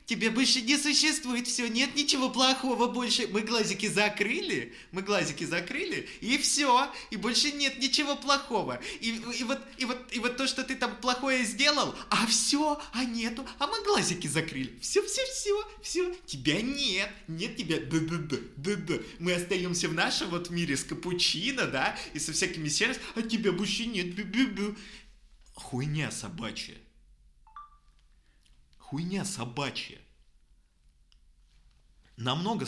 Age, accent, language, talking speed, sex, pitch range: 20-39, native, Russian, 145 wpm, male, 150-250 Hz